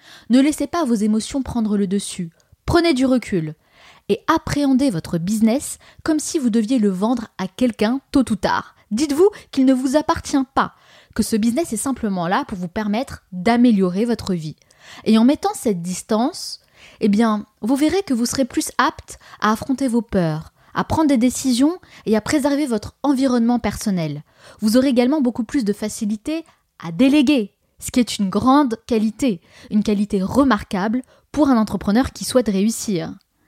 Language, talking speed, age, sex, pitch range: French, 170 wpm, 20-39, female, 205-265 Hz